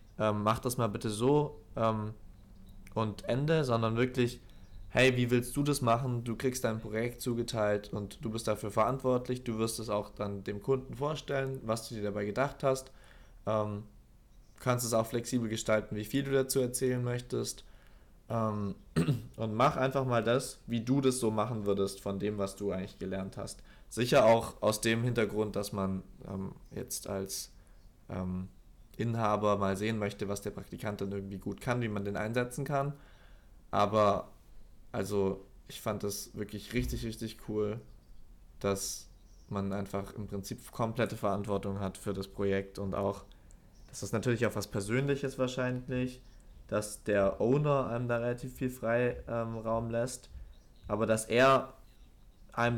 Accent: German